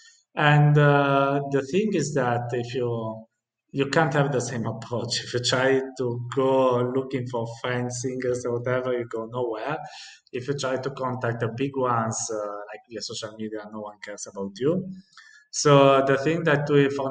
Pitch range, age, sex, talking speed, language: 115-140 Hz, 20-39, male, 180 wpm, English